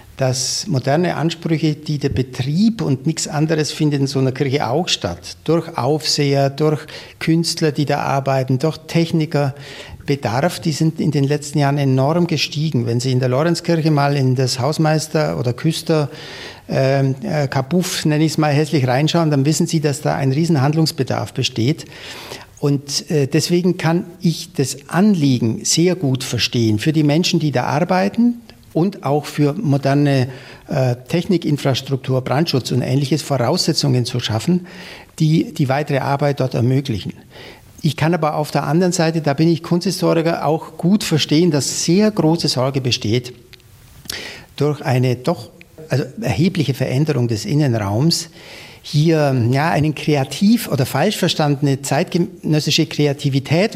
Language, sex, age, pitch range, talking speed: German, male, 60-79, 130-165 Hz, 145 wpm